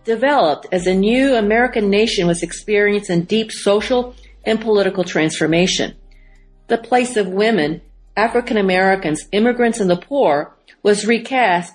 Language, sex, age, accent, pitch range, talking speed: English, female, 50-69, American, 185-240 Hz, 130 wpm